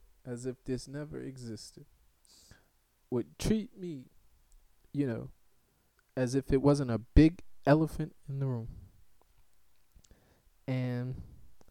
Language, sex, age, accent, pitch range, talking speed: English, male, 20-39, American, 105-135 Hz, 110 wpm